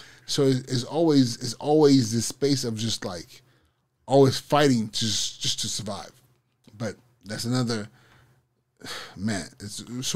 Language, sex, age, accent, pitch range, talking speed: English, male, 20-39, American, 120-135 Hz, 130 wpm